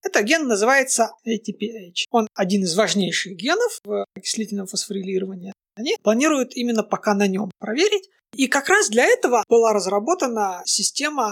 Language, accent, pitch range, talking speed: Russian, native, 205-275 Hz, 145 wpm